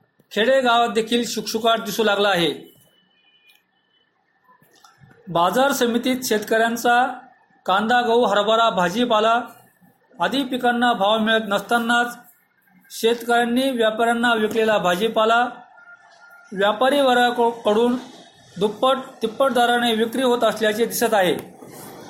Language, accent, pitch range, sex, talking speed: Marathi, native, 220-250 Hz, male, 90 wpm